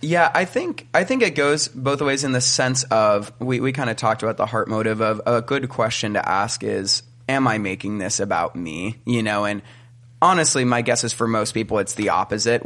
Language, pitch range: English, 110-125 Hz